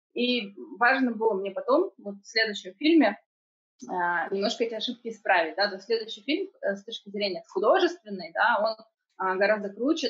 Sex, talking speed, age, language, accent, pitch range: female, 145 wpm, 20-39, Russian, native, 205-265 Hz